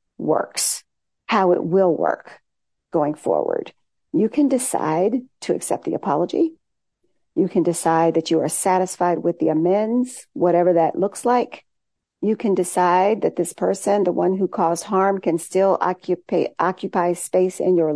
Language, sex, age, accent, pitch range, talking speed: English, female, 50-69, American, 165-205 Hz, 155 wpm